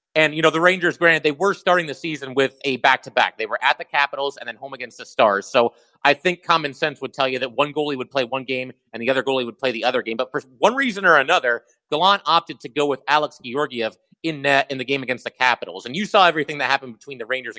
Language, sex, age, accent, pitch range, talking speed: English, male, 30-49, American, 130-155 Hz, 270 wpm